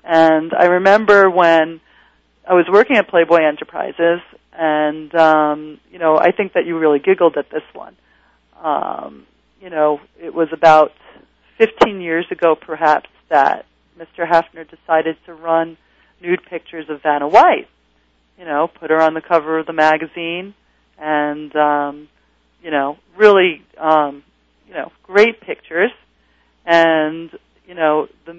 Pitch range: 155-180 Hz